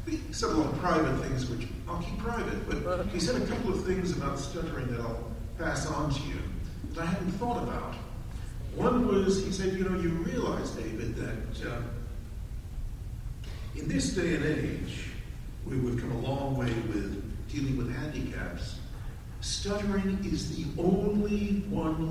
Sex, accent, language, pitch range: male, American, English, 110-160 Hz